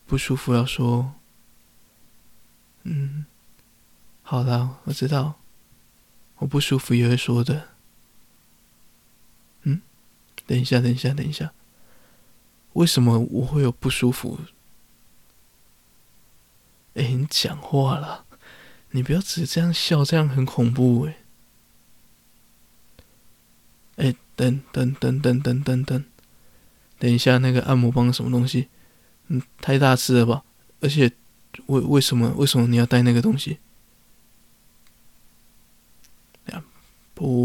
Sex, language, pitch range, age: male, Chinese, 120-140 Hz, 20-39